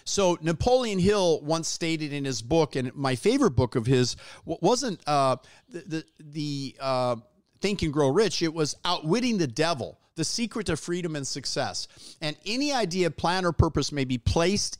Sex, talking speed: male, 180 wpm